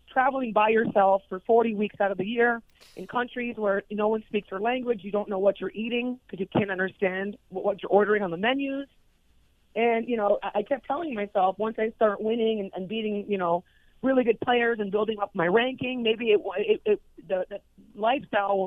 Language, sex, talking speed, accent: English, female, 205 wpm, American